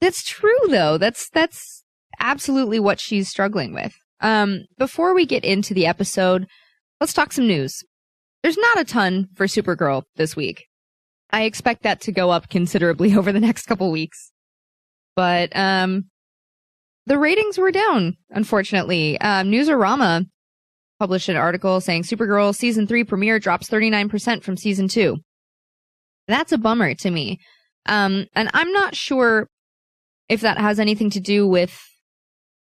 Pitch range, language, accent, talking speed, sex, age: 170-220 Hz, English, American, 145 wpm, female, 20-39